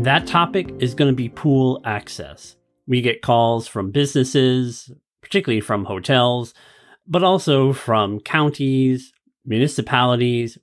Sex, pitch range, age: male, 110-145 Hz, 40-59